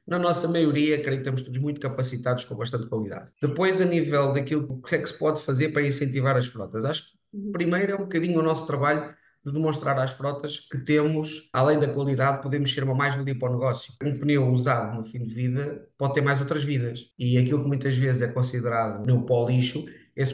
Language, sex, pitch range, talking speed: Italian, male, 125-145 Hz, 220 wpm